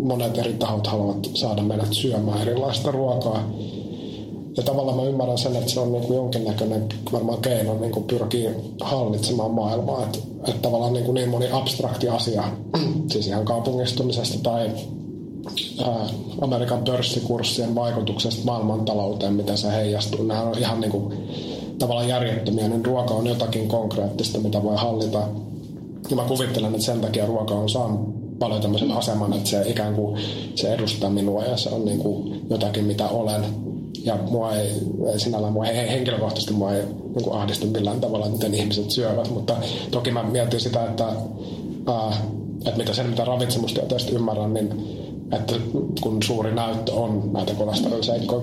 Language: Finnish